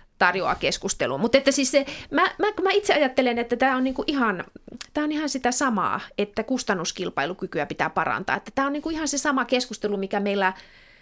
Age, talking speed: 30-49, 160 wpm